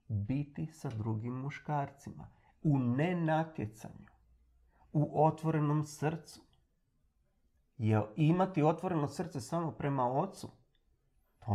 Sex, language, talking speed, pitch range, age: male, Croatian, 90 wpm, 110-155 Hz, 40-59